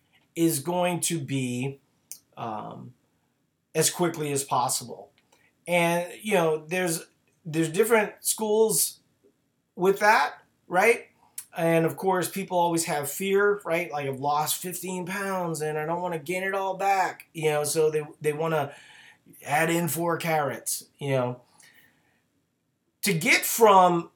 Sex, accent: male, American